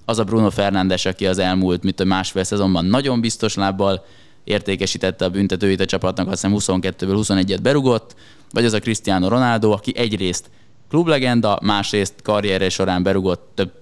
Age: 20-39